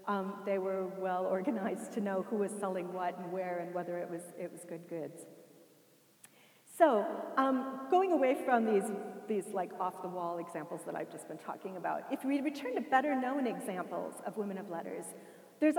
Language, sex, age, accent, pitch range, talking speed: English, female, 40-59, American, 195-285 Hz, 180 wpm